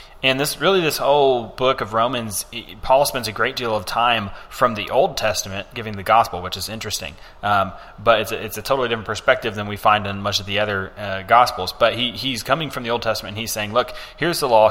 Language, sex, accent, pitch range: English, male, American, 100-120 Hz